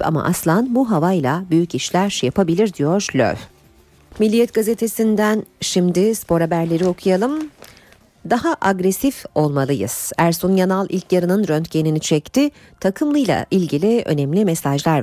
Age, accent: 50-69, native